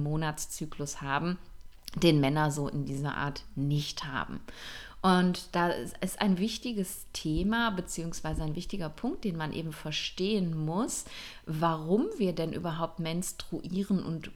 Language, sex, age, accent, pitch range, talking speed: German, female, 30-49, German, 155-200 Hz, 130 wpm